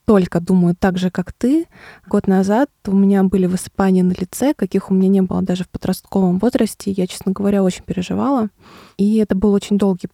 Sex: female